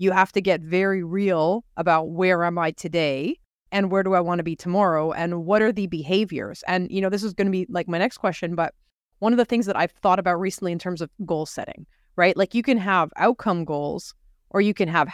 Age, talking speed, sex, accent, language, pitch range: 30-49, 245 wpm, female, American, English, 170-200 Hz